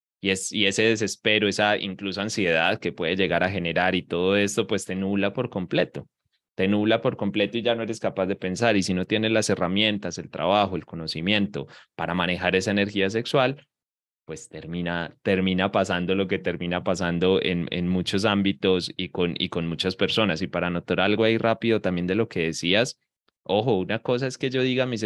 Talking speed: 200 wpm